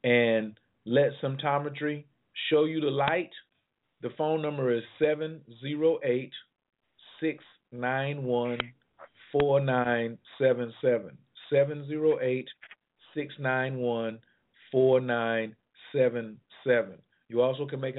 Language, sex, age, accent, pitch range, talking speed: English, male, 40-59, American, 120-150 Hz, 55 wpm